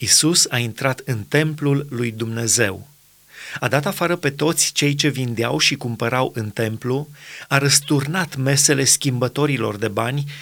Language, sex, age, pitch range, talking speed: Romanian, male, 30-49, 115-155 Hz, 145 wpm